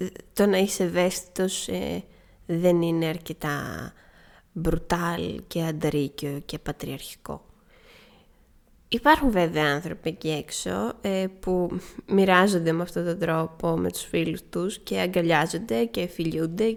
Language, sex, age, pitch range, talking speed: Greek, female, 20-39, 170-215 Hz, 120 wpm